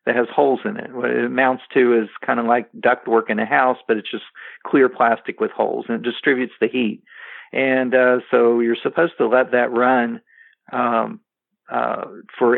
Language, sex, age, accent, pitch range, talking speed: English, male, 50-69, American, 120-130 Hz, 195 wpm